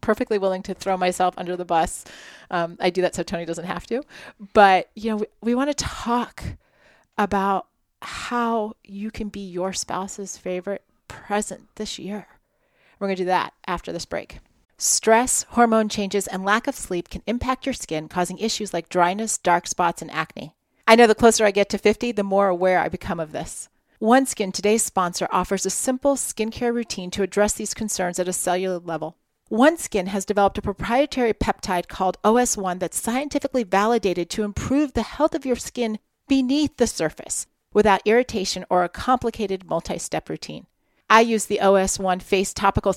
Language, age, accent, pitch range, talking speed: English, 30-49, American, 185-225 Hz, 180 wpm